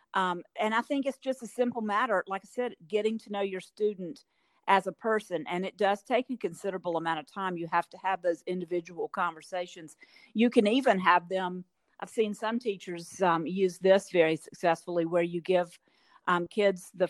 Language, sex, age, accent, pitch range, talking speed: English, female, 50-69, American, 175-210 Hz, 195 wpm